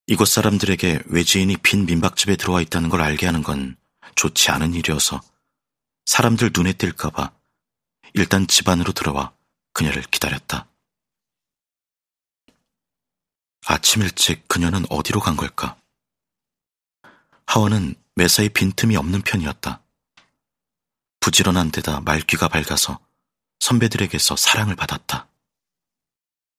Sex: male